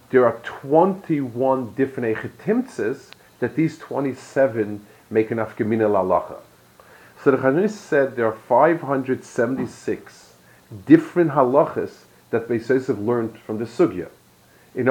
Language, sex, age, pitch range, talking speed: English, male, 40-59, 110-150 Hz, 115 wpm